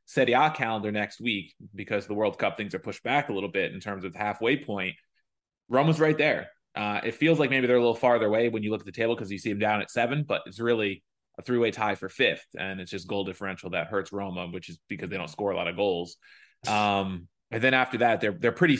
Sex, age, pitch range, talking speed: male, 20-39, 105-140 Hz, 255 wpm